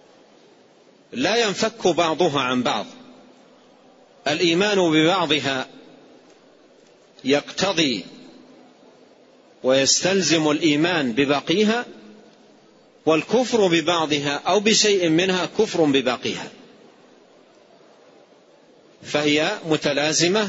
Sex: male